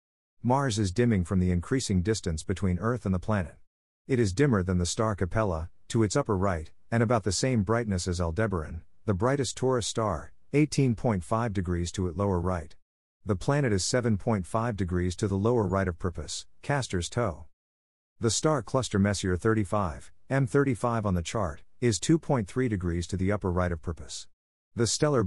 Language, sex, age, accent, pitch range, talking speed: English, male, 50-69, American, 90-115 Hz, 175 wpm